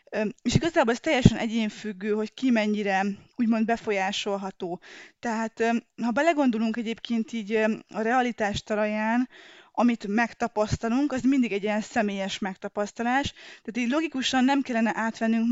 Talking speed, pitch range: 125 wpm, 205-245 Hz